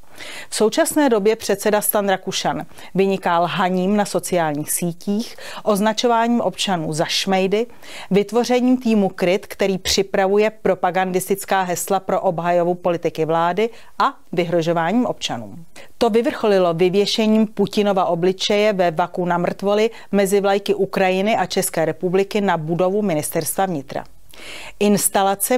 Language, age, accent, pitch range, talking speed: Czech, 40-59, native, 180-215 Hz, 115 wpm